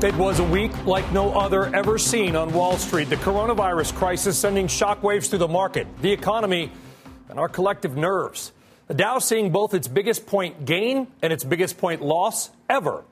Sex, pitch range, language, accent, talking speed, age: male, 155-205 Hz, English, American, 185 wpm, 40-59